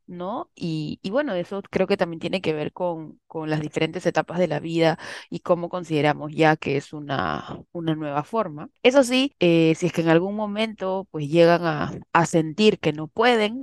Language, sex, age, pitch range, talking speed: Spanish, female, 20-39, 150-190 Hz, 205 wpm